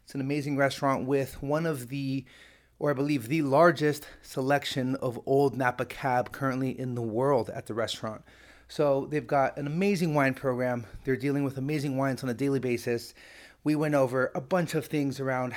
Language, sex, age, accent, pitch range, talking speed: English, male, 30-49, American, 130-150 Hz, 190 wpm